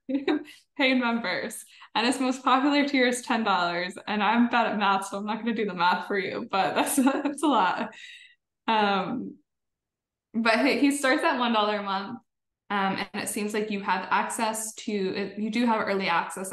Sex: female